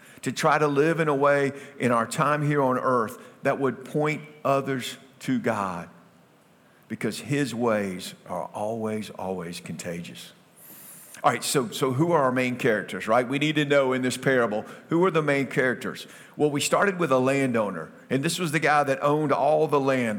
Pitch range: 130-160 Hz